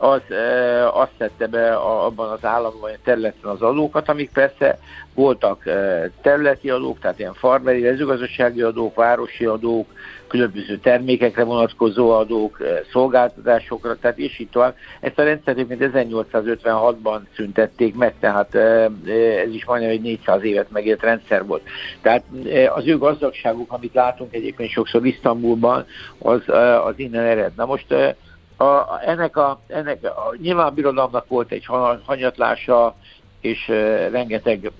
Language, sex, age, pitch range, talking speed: Hungarian, male, 60-79, 110-130 Hz, 145 wpm